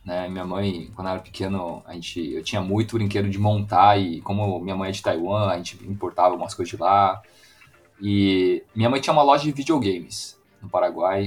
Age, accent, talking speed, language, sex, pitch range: 20-39, Brazilian, 210 wpm, Portuguese, male, 100-145 Hz